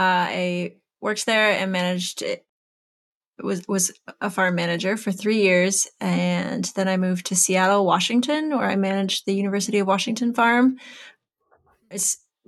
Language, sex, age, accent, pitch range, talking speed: English, female, 20-39, American, 180-215 Hz, 155 wpm